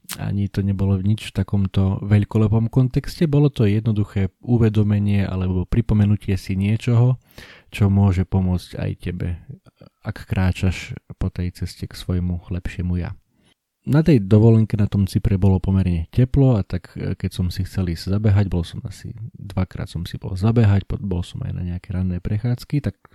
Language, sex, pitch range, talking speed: Slovak, male, 95-110 Hz, 165 wpm